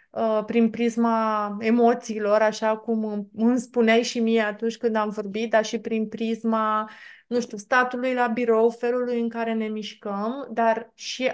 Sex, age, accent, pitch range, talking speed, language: female, 20-39, native, 220-245 Hz, 155 wpm, Romanian